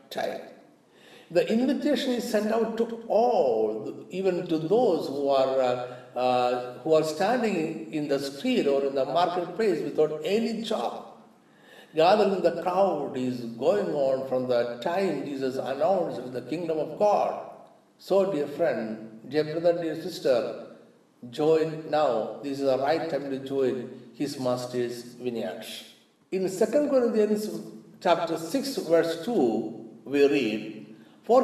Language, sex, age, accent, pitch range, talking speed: Malayalam, male, 60-79, native, 130-195 Hz, 145 wpm